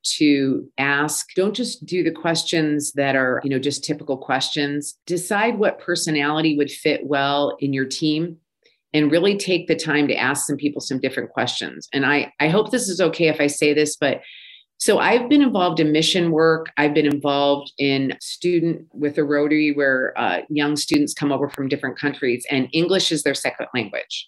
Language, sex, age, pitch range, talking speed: English, female, 40-59, 145-165 Hz, 190 wpm